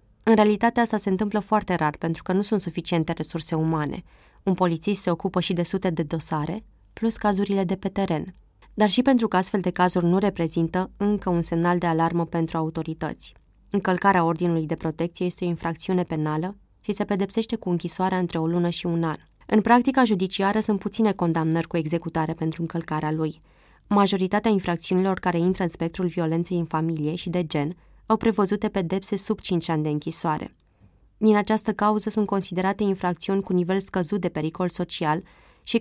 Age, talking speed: 20-39, 180 wpm